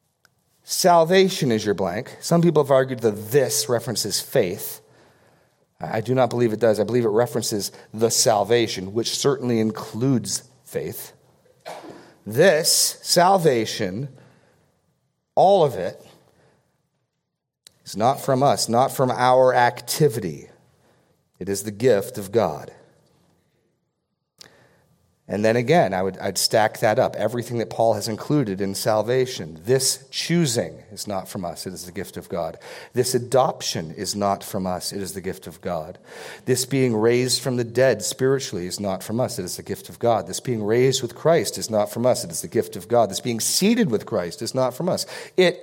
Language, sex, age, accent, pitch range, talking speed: English, male, 40-59, American, 110-135 Hz, 165 wpm